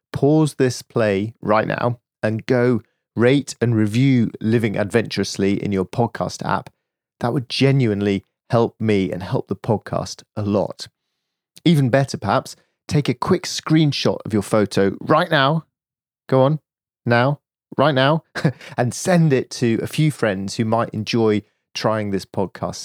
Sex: male